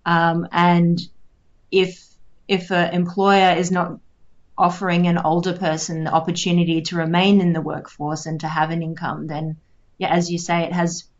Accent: Australian